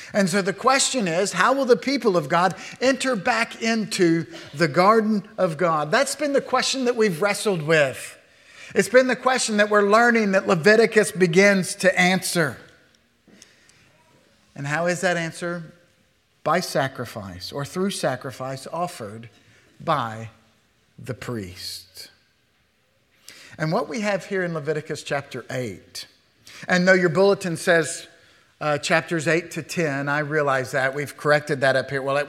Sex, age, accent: male, 50-69, American